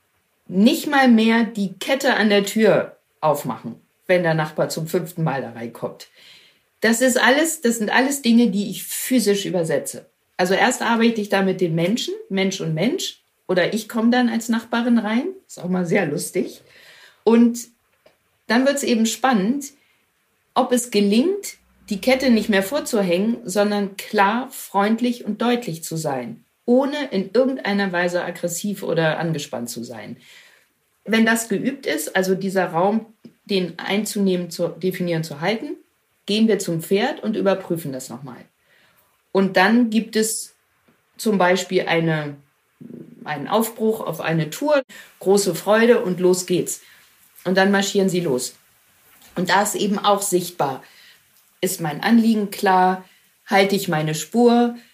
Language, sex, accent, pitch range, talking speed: German, female, German, 180-230 Hz, 145 wpm